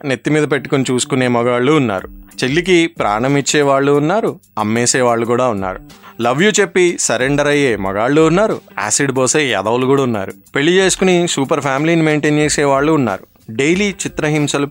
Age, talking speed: 20-39, 145 wpm